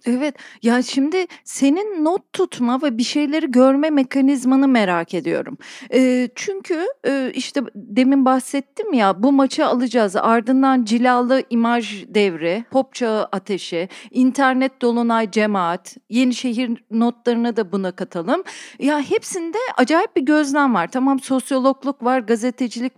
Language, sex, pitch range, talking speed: Turkish, female, 240-320 Hz, 130 wpm